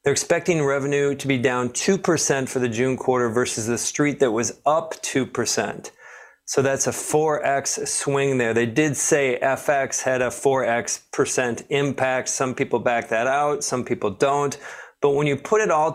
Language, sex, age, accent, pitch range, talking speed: English, male, 40-59, American, 125-145 Hz, 175 wpm